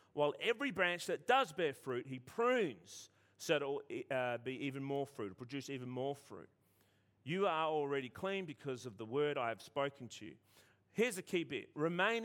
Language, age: English, 40-59